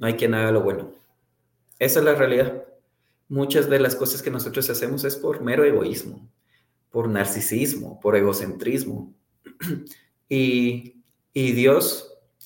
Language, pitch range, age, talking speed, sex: Spanish, 110-150 Hz, 30-49, 135 wpm, male